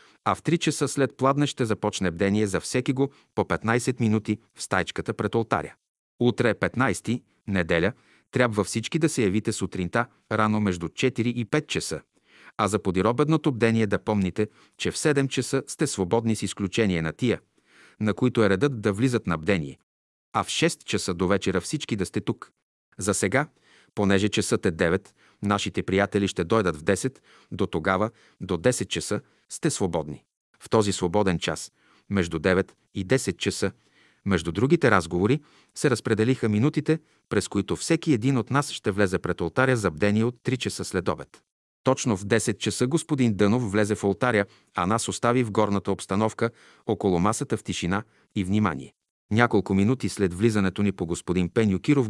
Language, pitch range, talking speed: Bulgarian, 95-120 Hz, 170 wpm